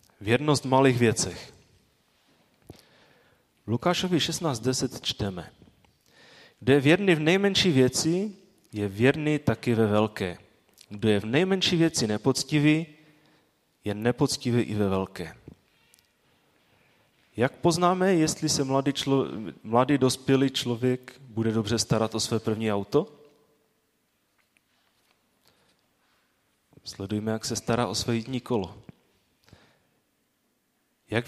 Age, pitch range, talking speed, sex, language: 30-49, 110-145 Hz, 100 wpm, male, Czech